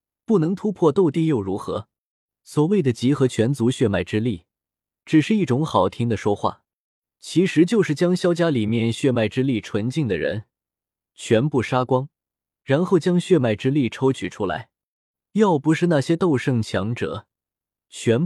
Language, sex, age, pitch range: Chinese, male, 20-39, 110-160 Hz